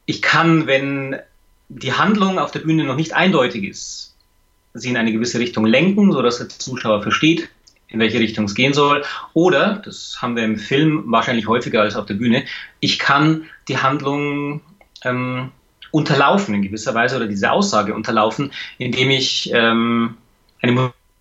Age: 30-49